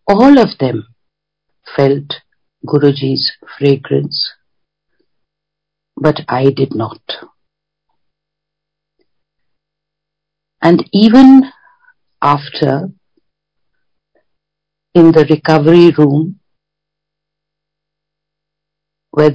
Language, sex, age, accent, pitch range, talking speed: Hindi, female, 50-69, native, 150-180 Hz, 55 wpm